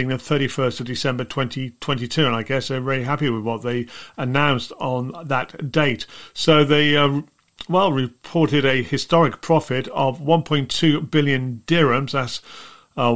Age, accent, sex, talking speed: 40-59, British, male, 145 wpm